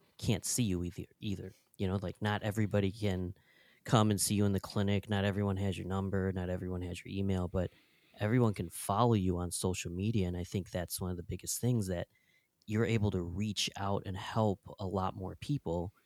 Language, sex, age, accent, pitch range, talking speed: English, male, 20-39, American, 90-110 Hz, 215 wpm